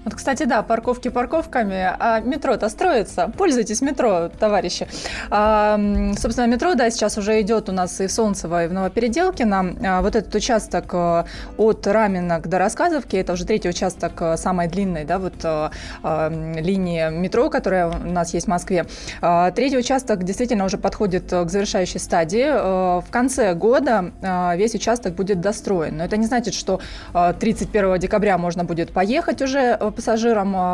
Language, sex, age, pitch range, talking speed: Russian, female, 20-39, 180-230 Hz, 150 wpm